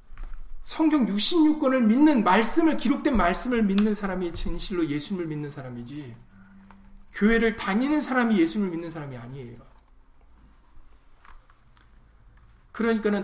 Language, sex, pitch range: Korean, male, 150-215 Hz